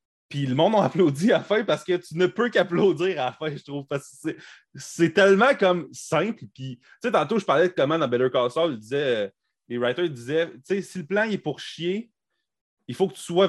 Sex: male